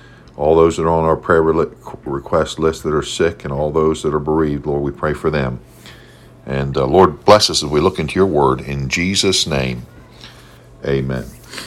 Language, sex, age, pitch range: English, male, 50-69, 80-105 Hz